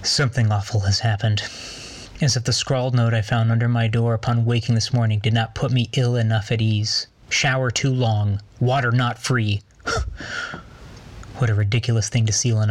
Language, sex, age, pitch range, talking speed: English, male, 20-39, 115-130 Hz, 185 wpm